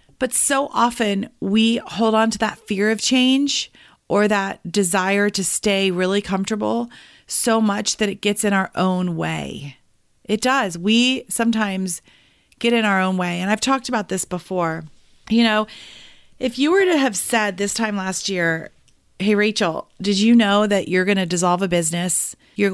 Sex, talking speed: female, 175 wpm